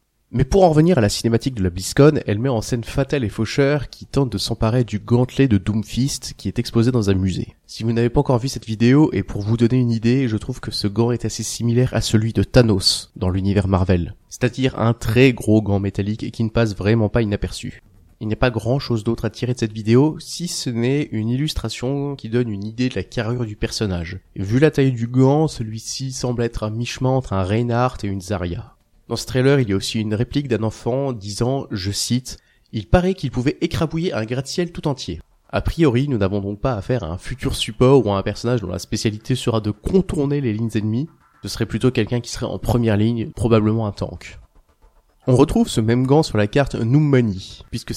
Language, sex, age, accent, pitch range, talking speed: French, male, 20-39, French, 105-130 Hz, 230 wpm